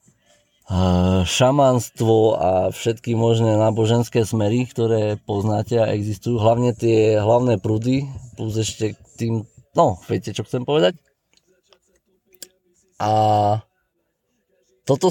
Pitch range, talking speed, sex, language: 110-140 Hz, 100 wpm, male, Slovak